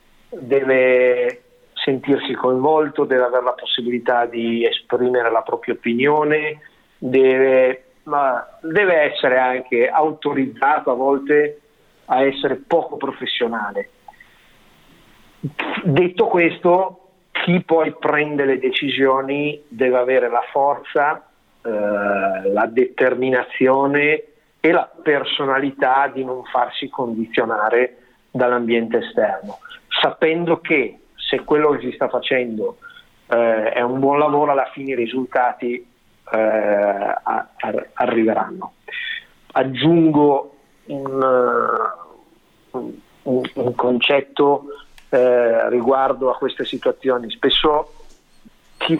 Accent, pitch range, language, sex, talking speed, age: native, 120-150 Hz, Italian, male, 95 wpm, 50-69